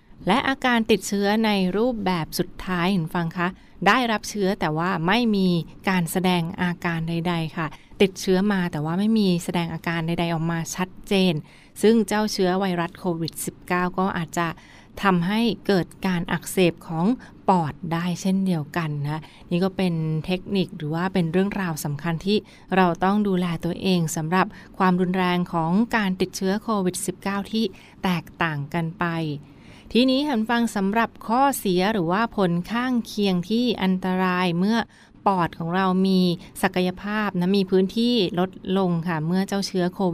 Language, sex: Thai, female